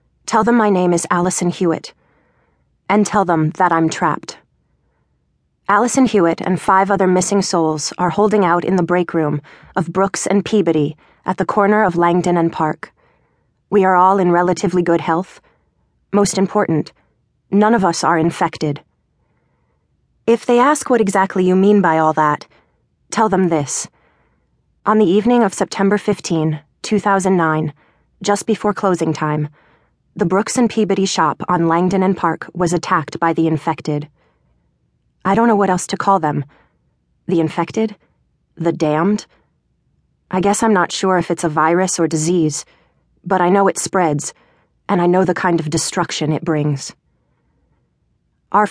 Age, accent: 20-39, American